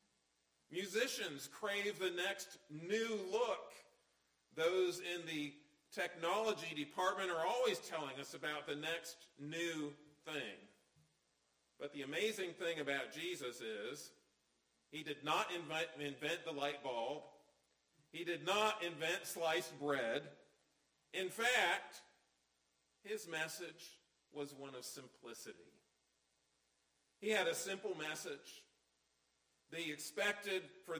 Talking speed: 110 wpm